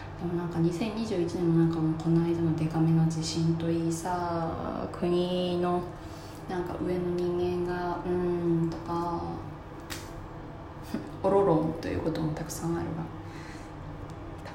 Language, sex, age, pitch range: Japanese, female, 20-39, 165-210 Hz